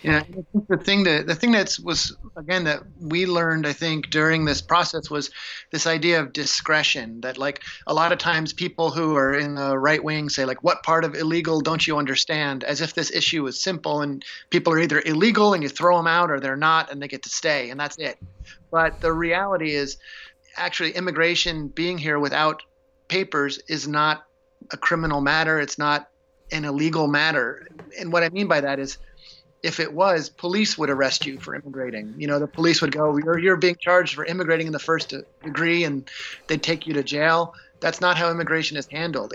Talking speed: 205 wpm